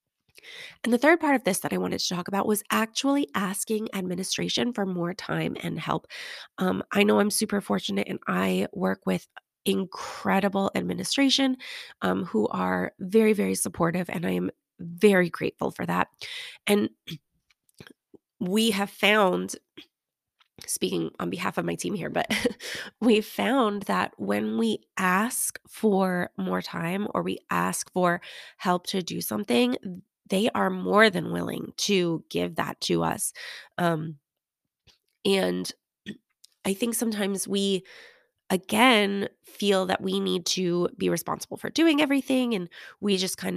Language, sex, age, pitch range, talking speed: English, female, 20-39, 170-220 Hz, 145 wpm